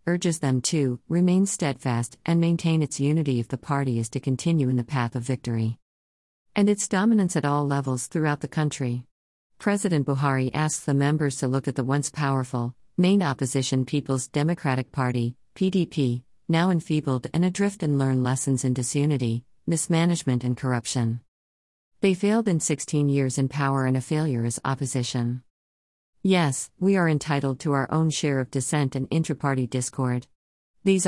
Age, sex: 50-69, female